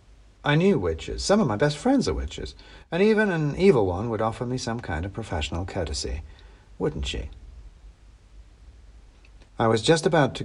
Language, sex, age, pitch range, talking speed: English, male, 60-79, 95-130 Hz, 170 wpm